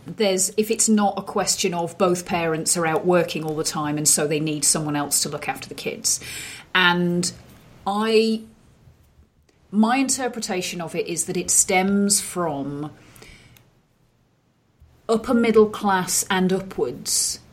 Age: 40-59